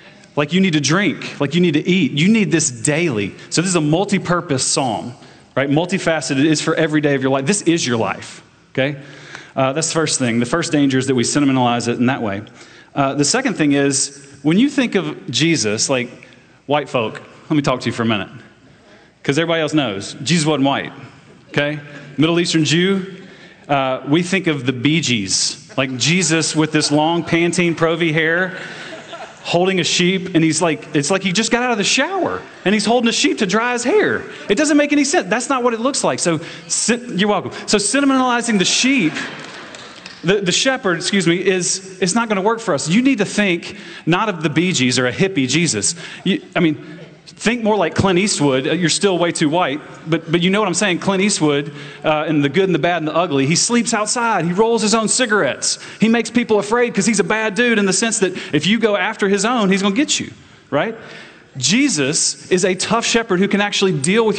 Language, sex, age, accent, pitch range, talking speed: English, male, 30-49, American, 145-205 Hz, 225 wpm